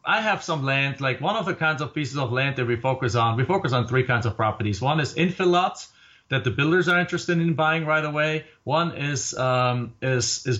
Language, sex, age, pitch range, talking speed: English, male, 40-59, 125-160 Hz, 240 wpm